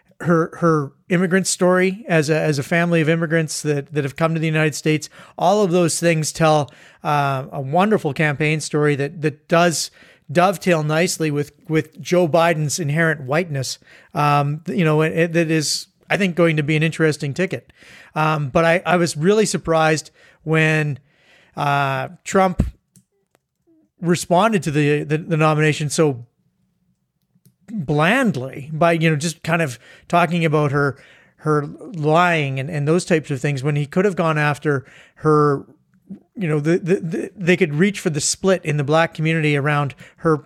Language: English